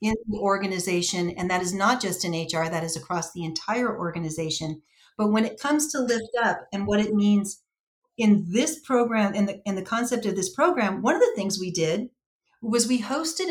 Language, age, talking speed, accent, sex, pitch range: English, 40-59, 210 wpm, American, female, 190-245 Hz